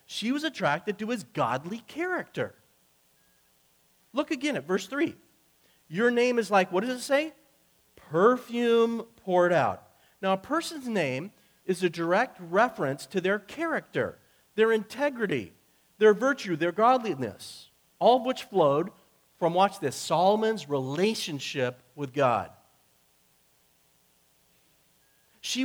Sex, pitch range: male, 140-215 Hz